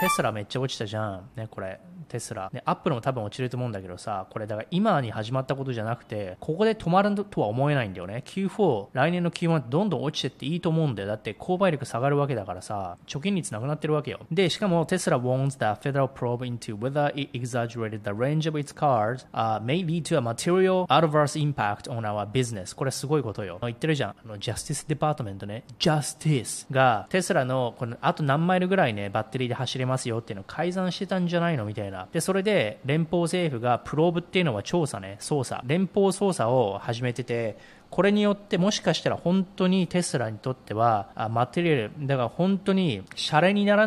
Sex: male